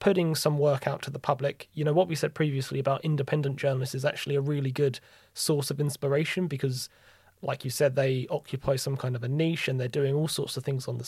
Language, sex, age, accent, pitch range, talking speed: English, male, 20-39, British, 130-150 Hz, 240 wpm